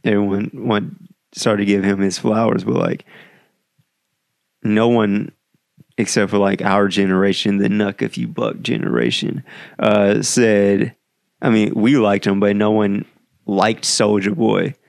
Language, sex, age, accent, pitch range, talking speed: English, male, 20-39, American, 100-110 Hz, 145 wpm